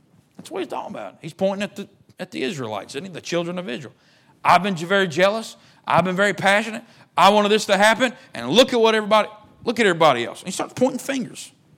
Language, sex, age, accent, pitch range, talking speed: English, male, 40-59, American, 165-230 Hz, 230 wpm